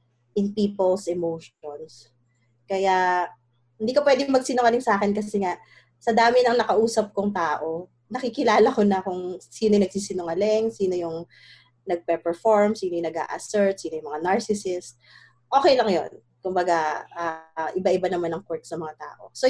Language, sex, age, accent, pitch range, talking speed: English, female, 20-39, Filipino, 160-215 Hz, 150 wpm